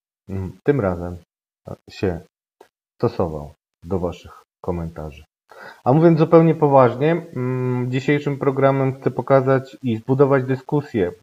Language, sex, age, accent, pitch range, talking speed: Polish, male, 30-49, native, 105-135 Hz, 95 wpm